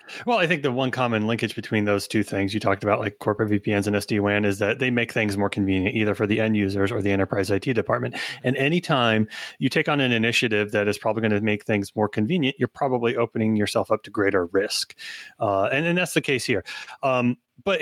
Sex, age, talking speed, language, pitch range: male, 30-49, 230 wpm, English, 105-125 Hz